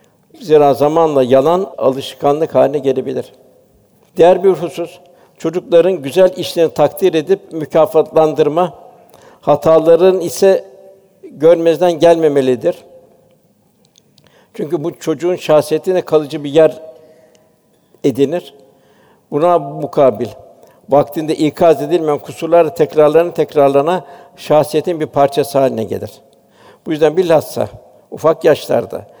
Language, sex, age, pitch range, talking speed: Turkish, male, 60-79, 145-180 Hz, 90 wpm